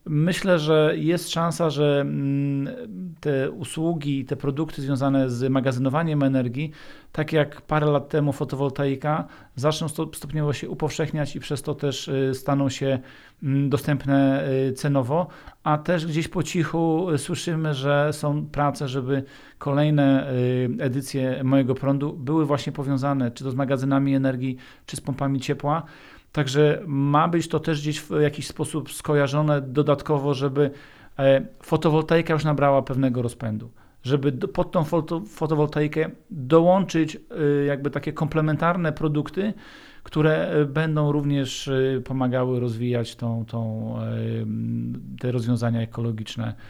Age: 40-59